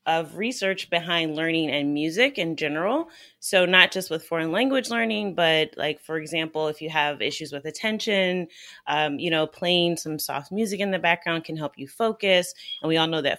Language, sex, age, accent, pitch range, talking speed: English, female, 30-49, American, 160-205 Hz, 195 wpm